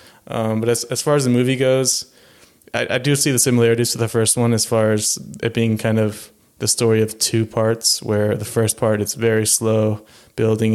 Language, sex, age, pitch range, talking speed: English, male, 20-39, 105-115 Hz, 220 wpm